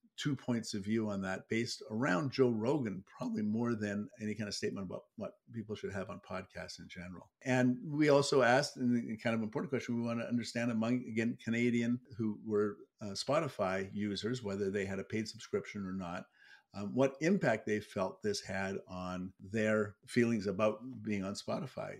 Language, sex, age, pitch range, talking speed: English, male, 50-69, 100-125 Hz, 185 wpm